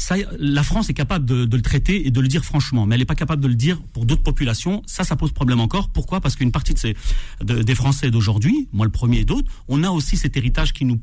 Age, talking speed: 40-59, 285 wpm